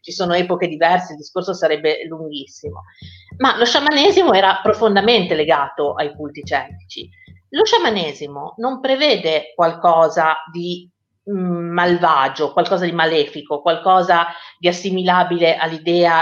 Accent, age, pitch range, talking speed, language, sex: native, 50-69, 145-195 Hz, 120 wpm, Italian, female